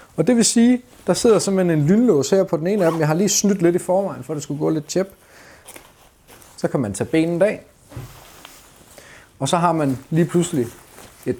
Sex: male